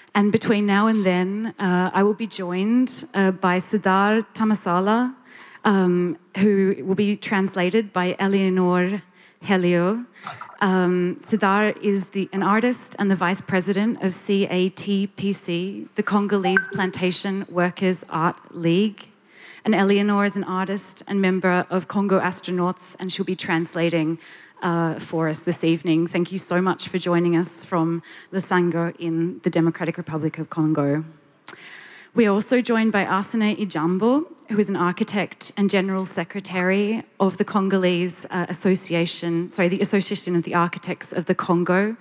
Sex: female